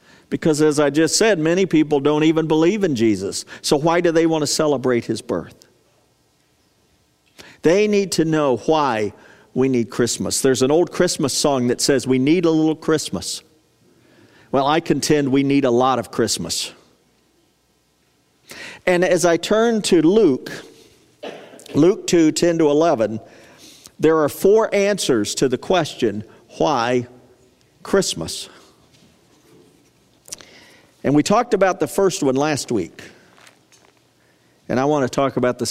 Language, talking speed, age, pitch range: English, 145 wpm, 50-69, 130-180 Hz